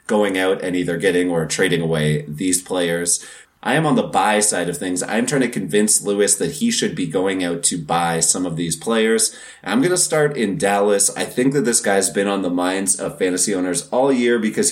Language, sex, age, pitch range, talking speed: English, male, 30-49, 90-130 Hz, 230 wpm